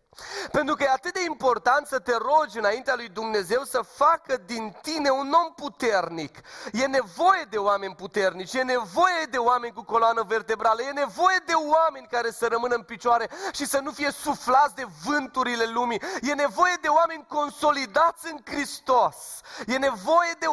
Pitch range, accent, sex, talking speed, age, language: 220-310 Hz, native, male, 170 wpm, 30-49, Romanian